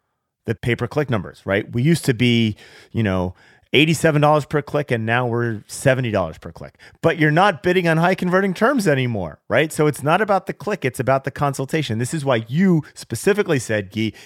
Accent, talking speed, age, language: American, 195 wpm, 30-49, English